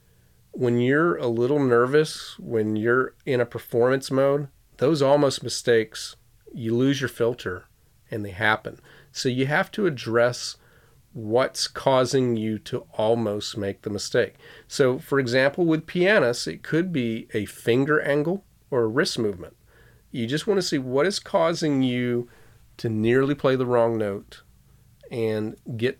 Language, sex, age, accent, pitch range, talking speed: English, male, 40-59, American, 110-135 Hz, 150 wpm